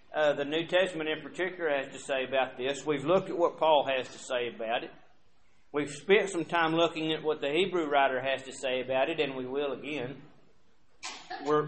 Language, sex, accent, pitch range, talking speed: English, male, American, 135-165 Hz, 210 wpm